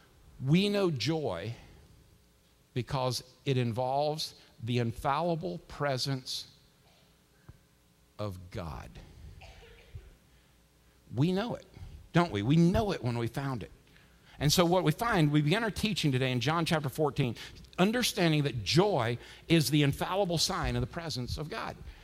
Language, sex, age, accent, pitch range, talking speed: English, male, 50-69, American, 130-170 Hz, 135 wpm